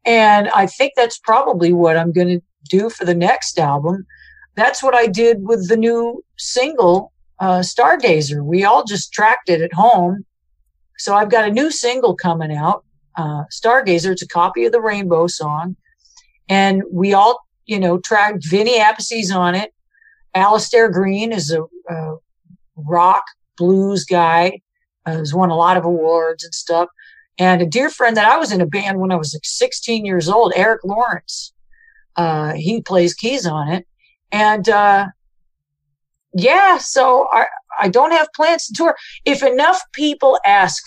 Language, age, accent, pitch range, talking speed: English, 50-69, American, 170-240 Hz, 170 wpm